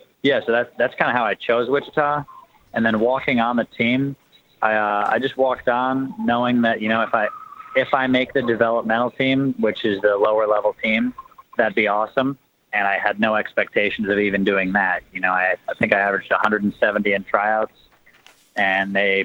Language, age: English, 30-49